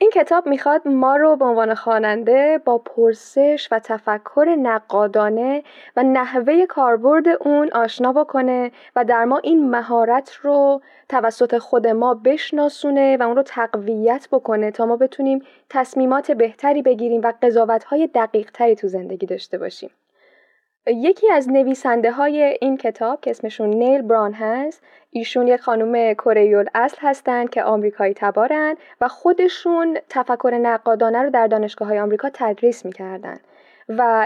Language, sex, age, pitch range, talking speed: Persian, female, 10-29, 225-280 Hz, 135 wpm